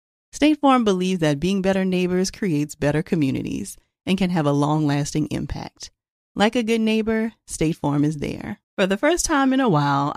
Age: 40-59